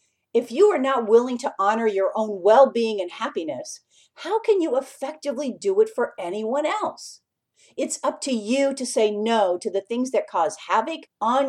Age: 50-69